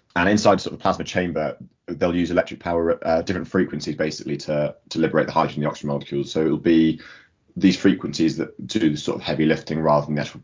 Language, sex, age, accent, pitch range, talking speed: English, male, 20-39, British, 75-85 Hz, 240 wpm